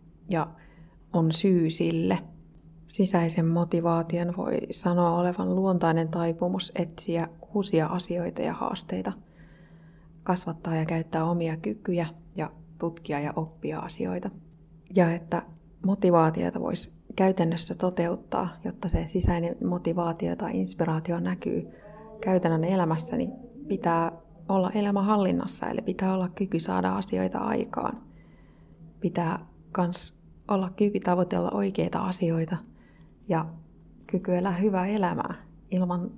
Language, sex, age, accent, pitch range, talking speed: Finnish, female, 30-49, native, 165-185 Hz, 105 wpm